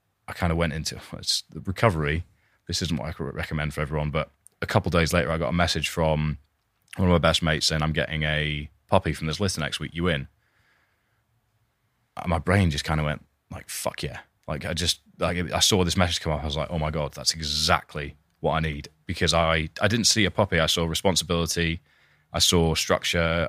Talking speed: 215 wpm